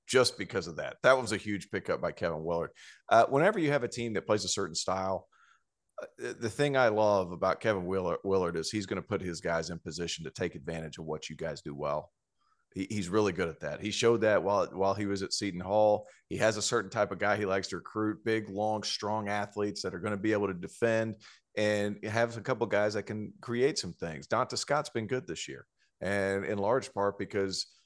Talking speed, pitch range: 240 wpm, 100-115 Hz